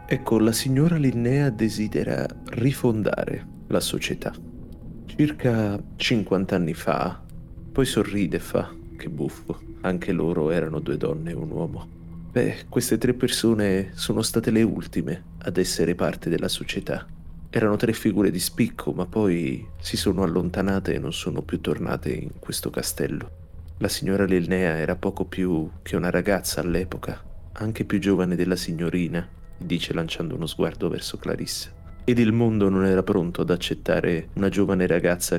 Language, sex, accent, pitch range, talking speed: Italian, male, native, 85-110 Hz, 150 wpm